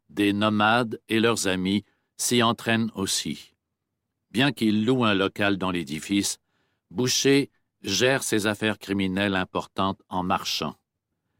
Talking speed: 120 wpm